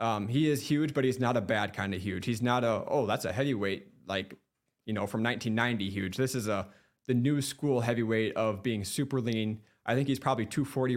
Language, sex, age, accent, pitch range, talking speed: English, male, 20-39, American, 110-135 Hz, 225 wpm